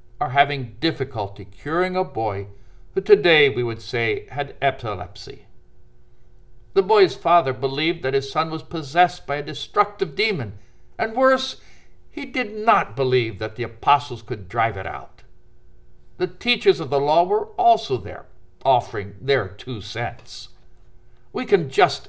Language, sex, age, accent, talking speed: English, male, 60-79, American, 145 wpm